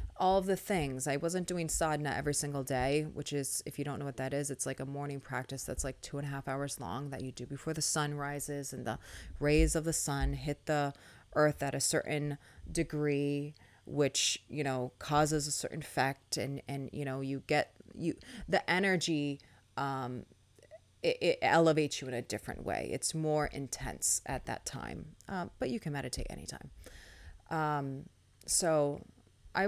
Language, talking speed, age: English, 190 wpm, 30-49